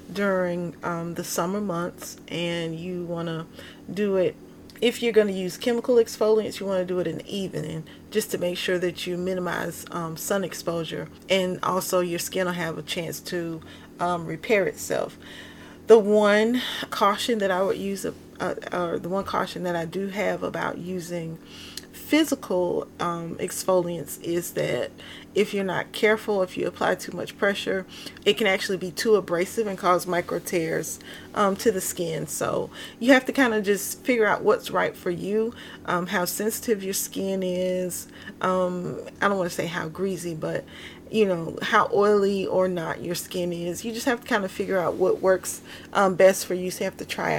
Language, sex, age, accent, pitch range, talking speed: English, female, 30-49, American, 175-205 Hz, 190 wpm